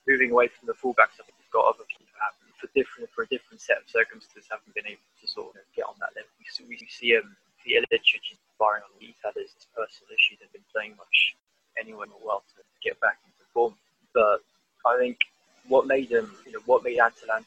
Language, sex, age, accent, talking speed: English, male, 20-39, British, 230 wpm